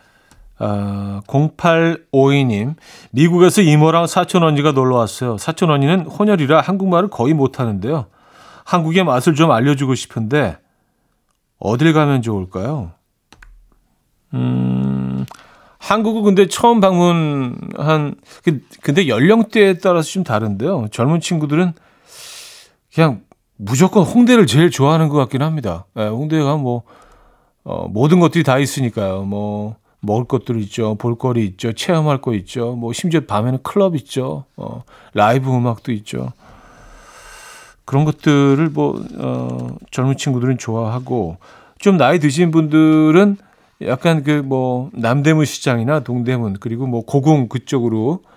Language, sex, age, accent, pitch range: Korean, male, 40-59, native, 115-165 Hz